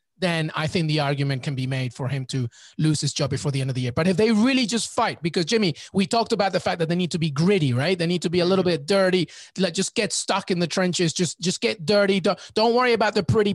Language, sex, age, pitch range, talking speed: English, male, 30-49, 160-215 Hz, 290 wpm